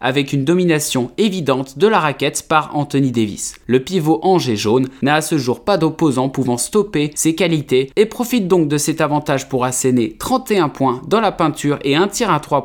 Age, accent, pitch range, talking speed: 20-39, French, 130-175 Hz, 200 wpm